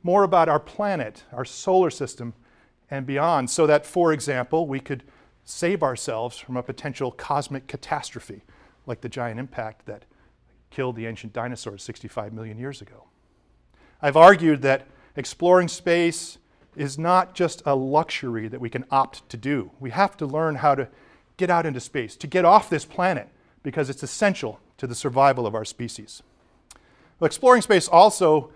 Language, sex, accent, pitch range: English, male, American, 125-160 Hz